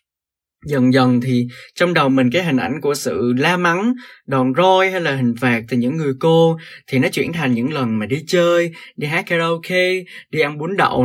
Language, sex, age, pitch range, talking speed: Vietnamese, male, 20-39, 125-165 Hz, 210 wpm